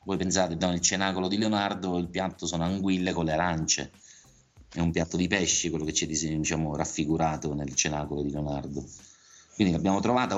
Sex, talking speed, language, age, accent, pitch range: male, 175 wpm, Italian, 30-49, native, 80-95 Hz